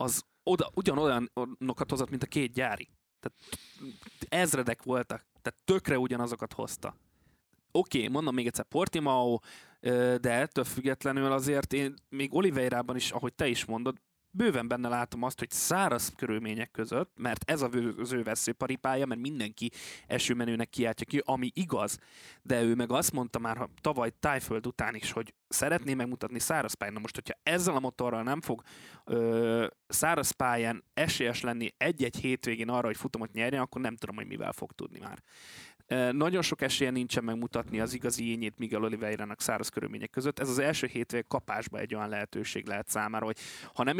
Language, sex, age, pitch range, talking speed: Hungarian, male, 20-39, 115-135 Hz, 165 wpm